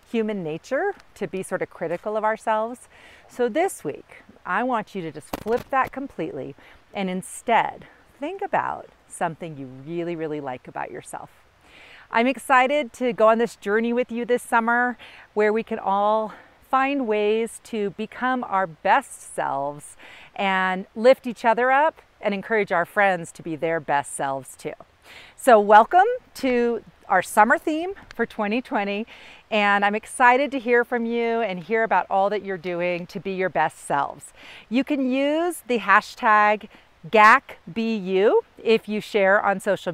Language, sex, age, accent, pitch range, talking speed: English, female, 40-59, American, 190-245 Hz, 160 wpm